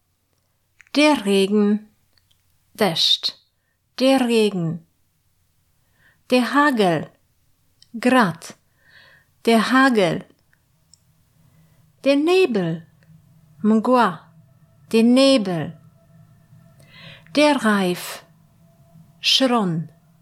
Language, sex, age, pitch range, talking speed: Polish, female, 50-69, 160-230 Hz, 55 wpm